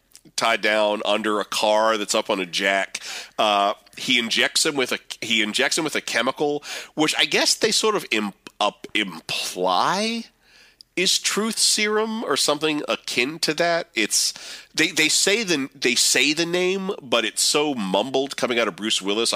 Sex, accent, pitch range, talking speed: male, American, 100-140 Hz, 175 wpm